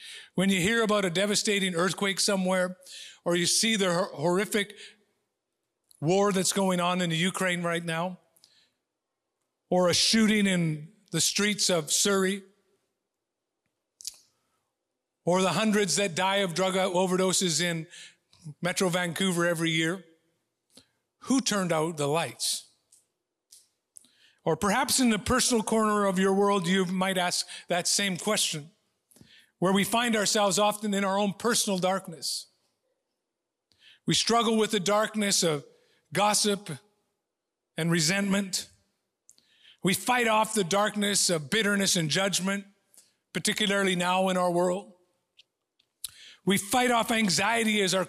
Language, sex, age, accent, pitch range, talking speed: English, male, 50-69, American, 180-210 Hz, 125 wpm